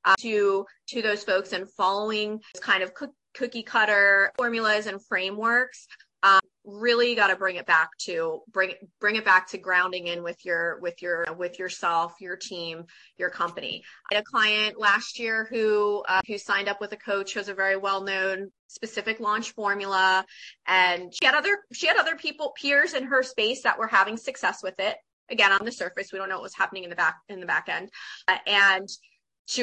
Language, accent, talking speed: English, American, 210 wpm